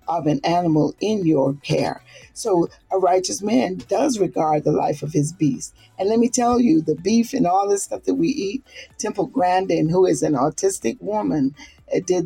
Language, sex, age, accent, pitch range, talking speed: English, female, 50-69, American, 175-280 Hz, 190 wpm